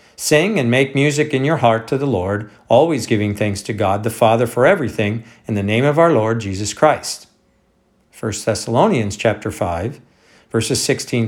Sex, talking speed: male, 175 wpm